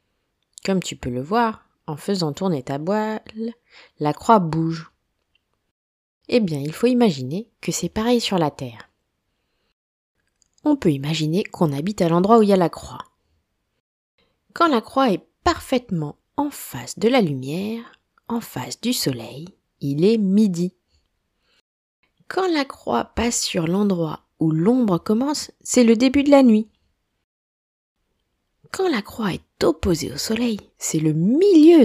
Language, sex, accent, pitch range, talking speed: French, female, French, 150-235 Hz, 150 wpm